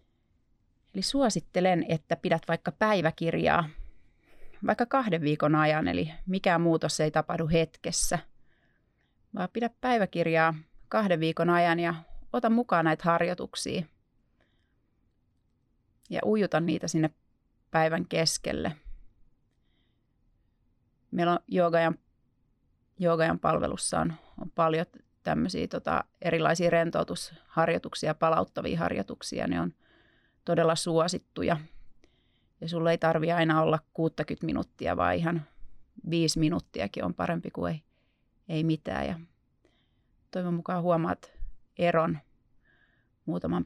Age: 30-49